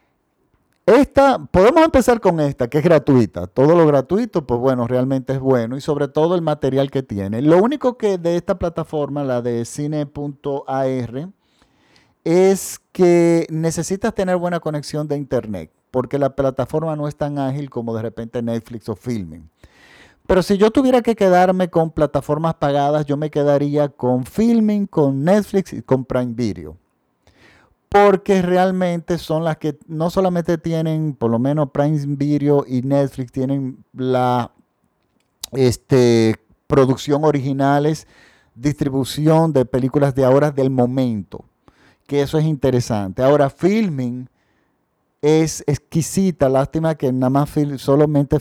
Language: Spanish